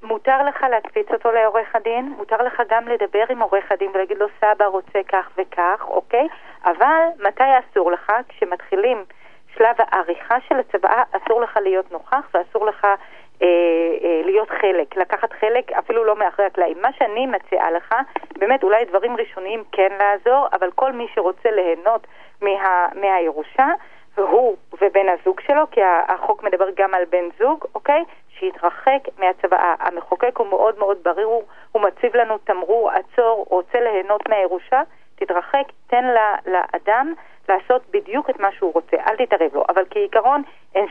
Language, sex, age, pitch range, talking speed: Hebrew, female, 40-59, 190-245 Hz, 155 wpm